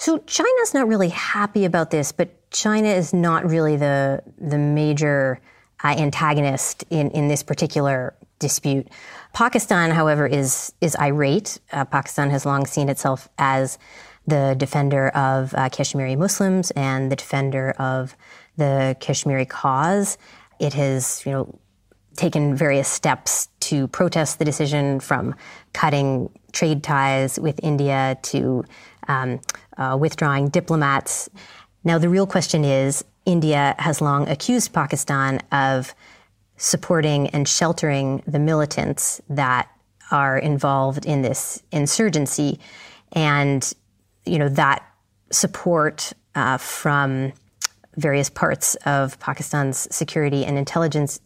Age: 30-49